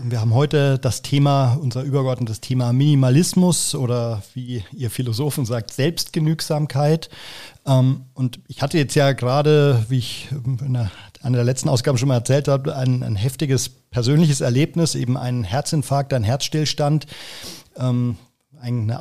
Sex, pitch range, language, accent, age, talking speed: male, 130-155 Hz, German, German, 40-59, 135 wpm